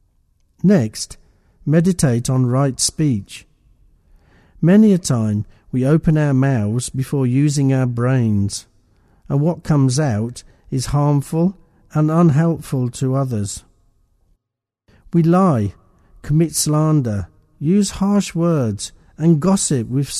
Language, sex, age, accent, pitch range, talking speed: English, male, 50-69, British, 105-165 Hz, 105 wpm